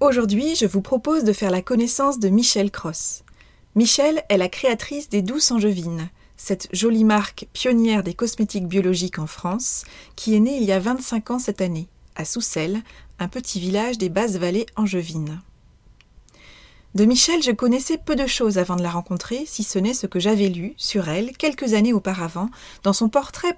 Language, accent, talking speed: French, French, 180 wpm